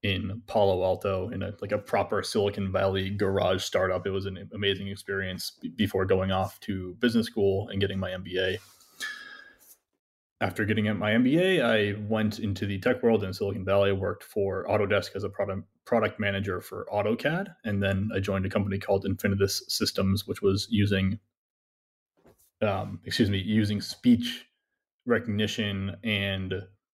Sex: male